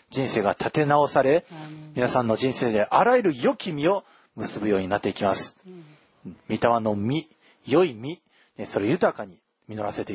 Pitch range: 120-170 Hz